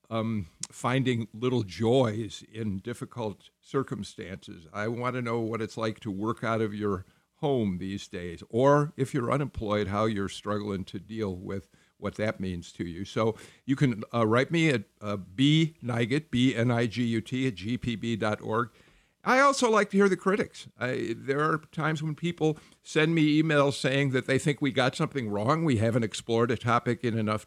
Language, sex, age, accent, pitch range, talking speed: English, male, 50-69, American, 105-135 Hz, 175 wpm